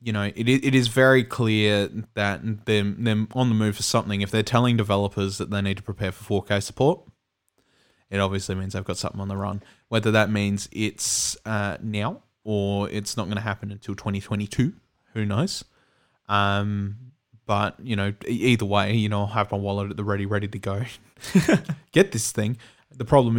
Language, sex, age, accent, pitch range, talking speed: English, male, 20-39, Australian, 100-115 Hz, 190 wpm